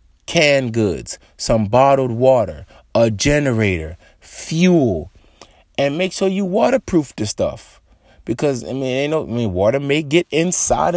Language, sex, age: English, male, 30-49